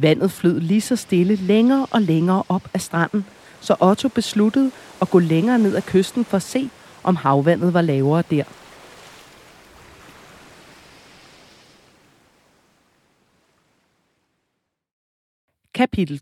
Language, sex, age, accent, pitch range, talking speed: Danish, female, 30-49, native, 165-215 Hz, 105 wpm